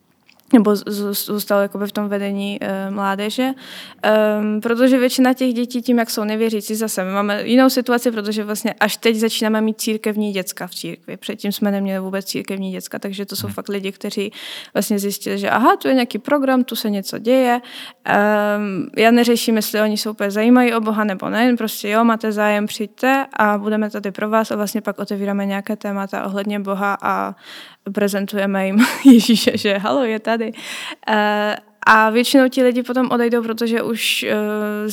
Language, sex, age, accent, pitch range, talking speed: Czech, female, 20-39, native, 205-230 Hz, 175 wpm